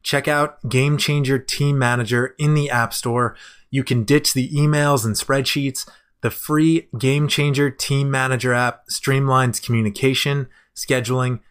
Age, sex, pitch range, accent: 20-39, male, 120-140 Hz, American